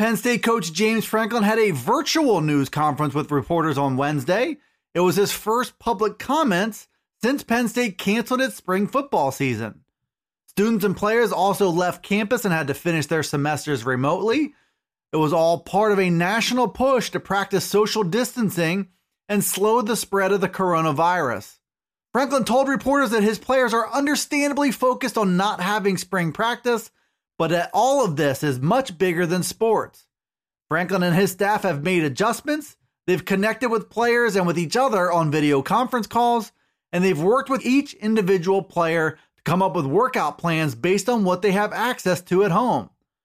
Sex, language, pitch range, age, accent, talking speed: male, English, 180-235 Hz, 30-49, American, 170 wpm